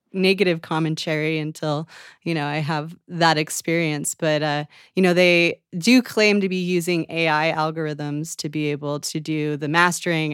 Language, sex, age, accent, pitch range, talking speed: English, female, 20-39, American, 145-165 Hz, 160 wpm